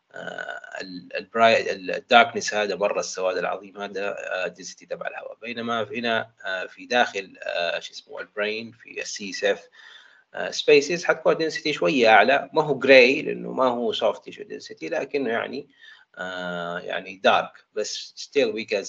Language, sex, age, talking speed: Arabic, male, 30-49, 155 wpm